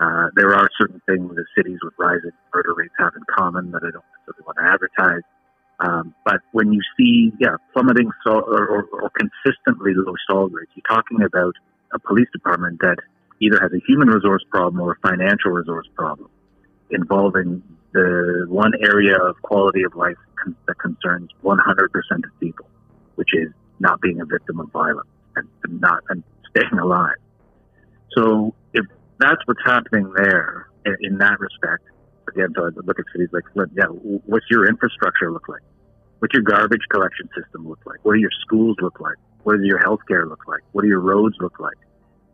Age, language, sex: 50-69, English, male